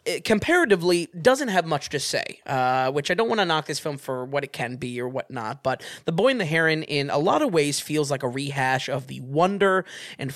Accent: American